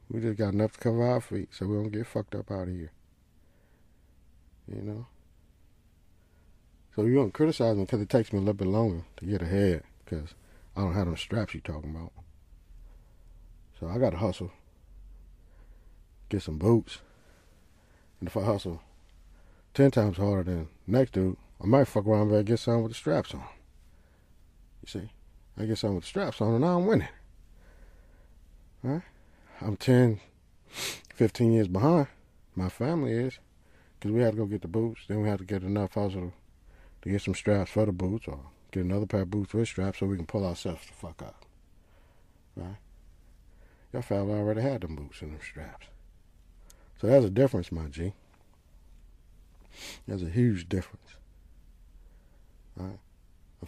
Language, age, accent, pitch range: English, 50-69, American, 85-110 Hz